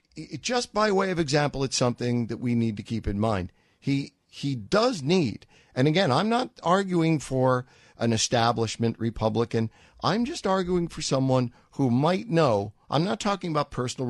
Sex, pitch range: male, 105-145 Hz